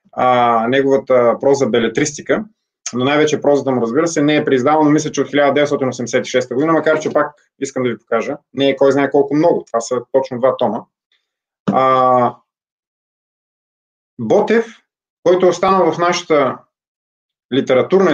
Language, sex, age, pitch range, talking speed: Bulgarian, male, 20-39, 135-175 Hz, 150 wpm